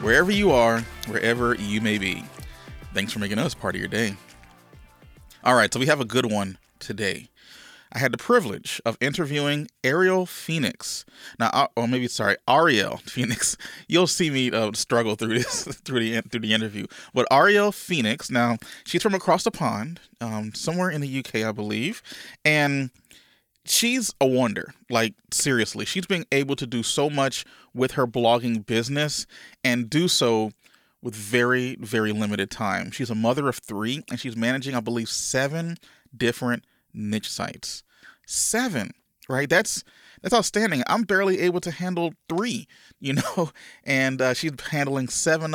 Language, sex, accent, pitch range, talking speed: English, male, American, 115-160 Hz, 160 wpm